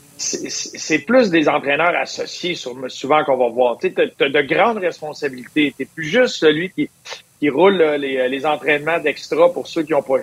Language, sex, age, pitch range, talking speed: French, male, 40-59, 140-175 Hz, 175 wpm